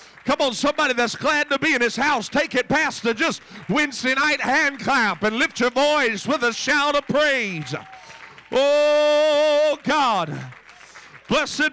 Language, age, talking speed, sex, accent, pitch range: English, 50-69, 160 wpm, male, American, 185-290 Hz